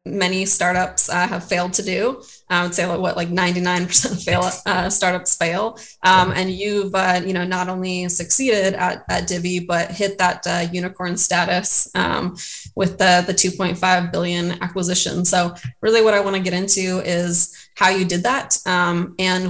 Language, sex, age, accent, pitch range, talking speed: English, female, 20-39, American, 175-190 Hz, 175 wpm